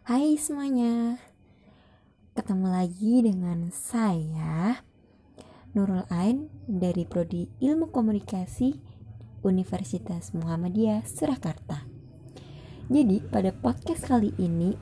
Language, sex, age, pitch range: Indonesian, female, 20-39, 160-205 Hz